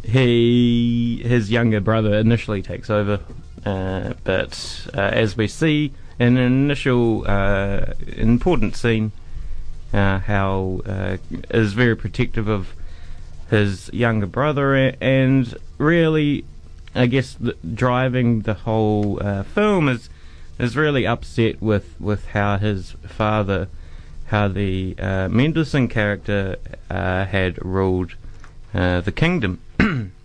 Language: English